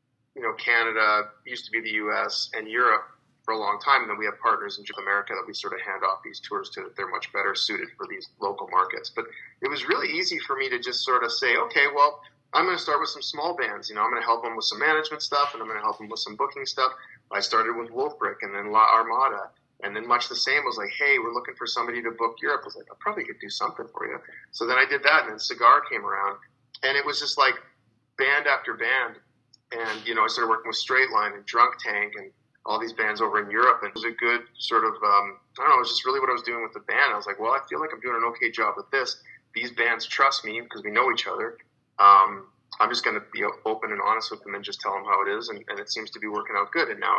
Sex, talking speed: male, 285 wpm